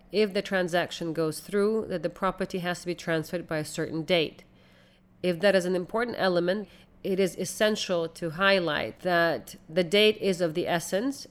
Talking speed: 180 wpm